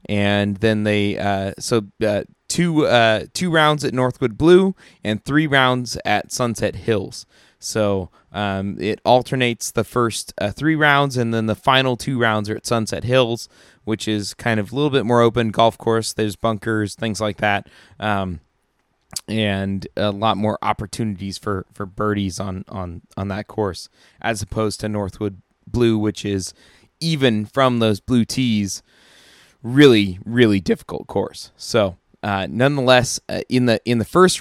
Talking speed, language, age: 160 wpm, English, 20-39